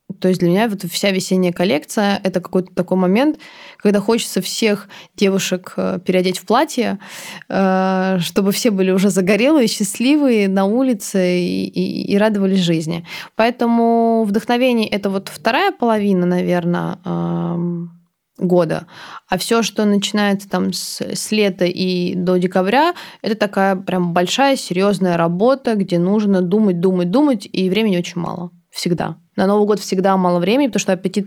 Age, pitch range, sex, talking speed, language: 20-39, 180-210 Hz, female, 145 wpm, Russian